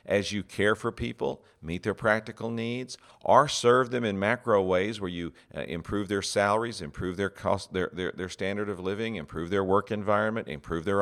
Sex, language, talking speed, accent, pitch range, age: male, English, 185 wpm, American, 90-115 Hz, 50-69